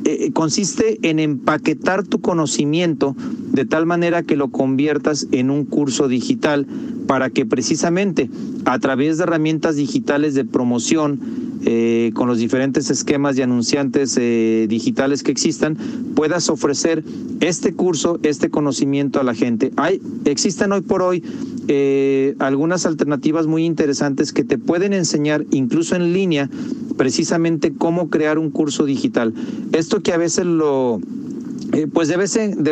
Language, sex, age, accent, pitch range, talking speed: Spanish, male, 40-59, Mexican, 140-180 Hz, 140 wpm